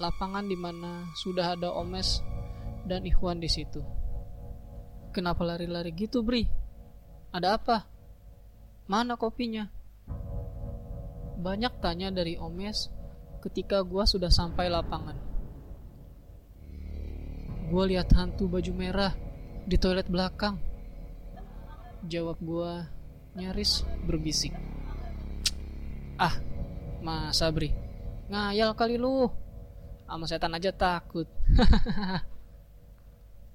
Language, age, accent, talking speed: Indonesian, 20-39, native, 85 wpm